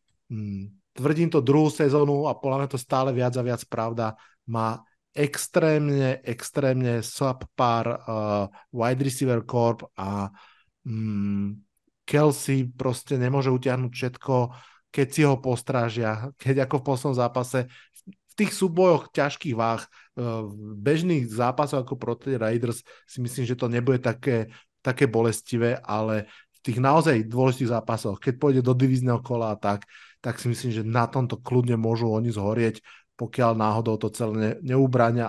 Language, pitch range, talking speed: Slovak, 115-135 Hz, 145 wpm